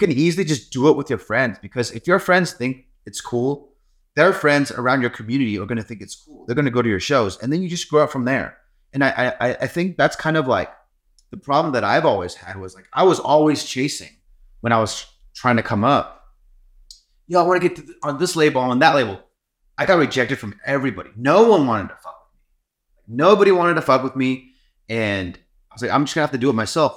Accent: American